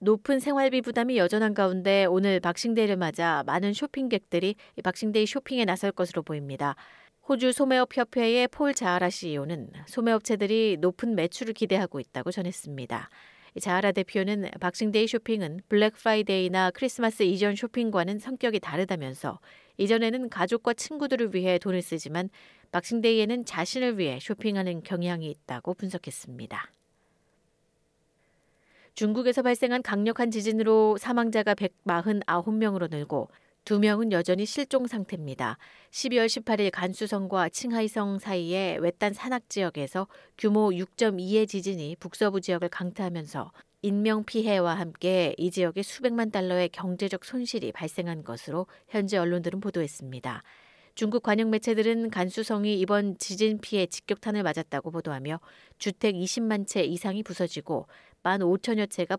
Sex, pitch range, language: female, 175-220 Hz, Korean